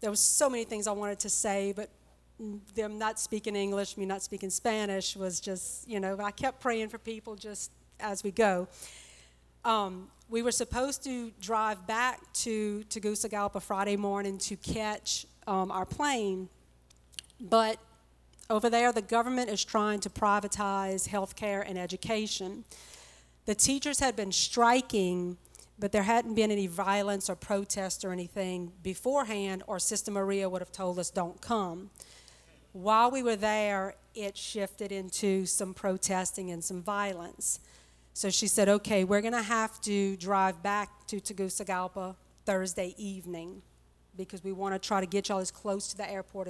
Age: 40-59